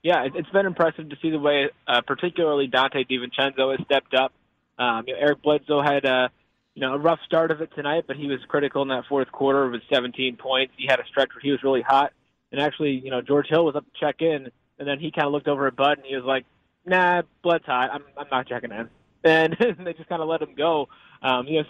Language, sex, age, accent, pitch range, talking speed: English, male, 20-39, American, 125-150 Hz, 255 wpm